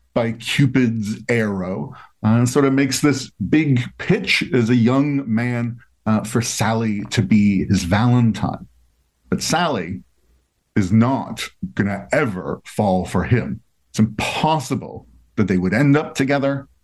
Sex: male